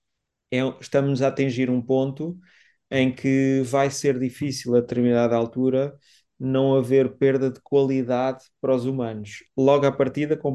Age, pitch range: 30-49, 120-140 Hz